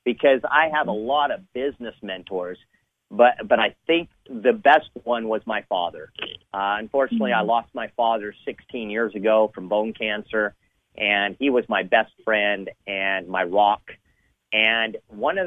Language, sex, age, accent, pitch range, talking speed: English, male, 40-59, American, 105-135 Hz, 165 wpm